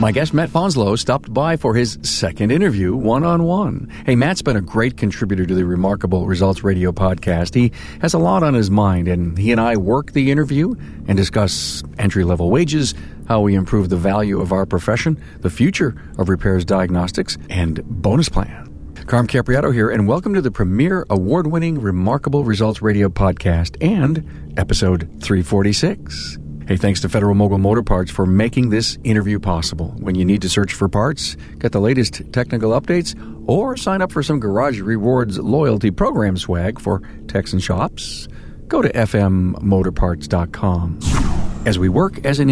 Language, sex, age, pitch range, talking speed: English, male, 50-69, 90-120 Hz, 165 wpm